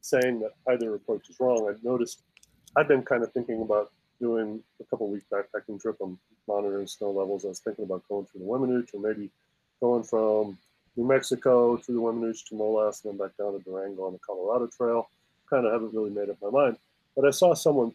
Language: English